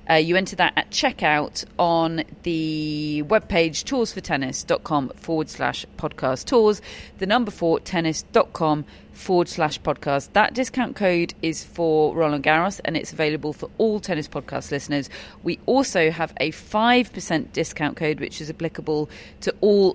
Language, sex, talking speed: English, female, 145 wpm